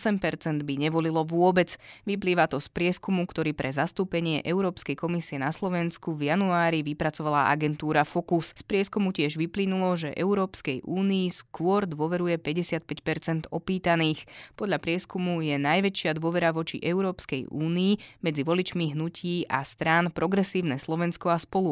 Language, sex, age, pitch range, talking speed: Slovak, female, 20-39, 155-185 Hz, 135 wpm